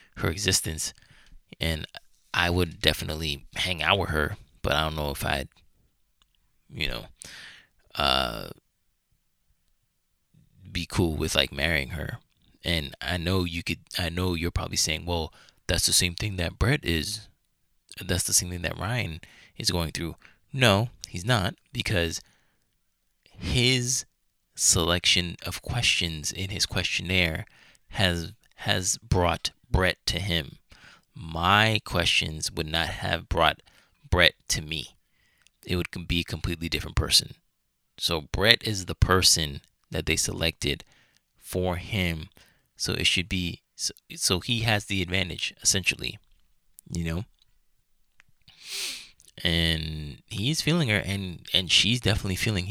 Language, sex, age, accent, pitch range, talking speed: English, male, 20-39, American, 80-100 Hz, 135 wpm